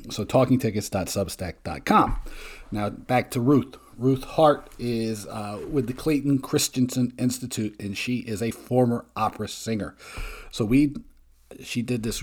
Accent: American